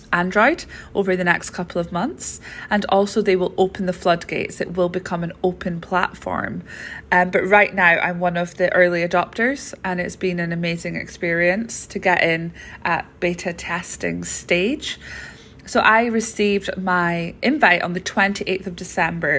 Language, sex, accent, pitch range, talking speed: English, female, British, 175-210 Hz, 165 wpm